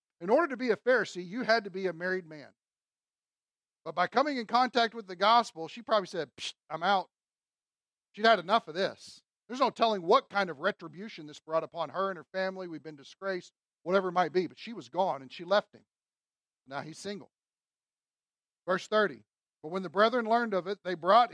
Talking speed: 210 wpm